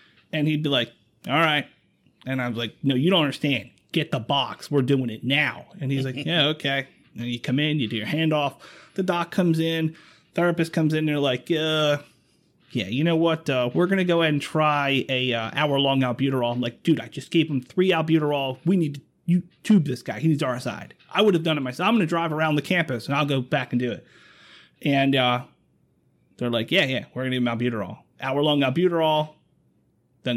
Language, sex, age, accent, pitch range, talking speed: English, male, 30-49, American, 130-165 Hz, 225 wpm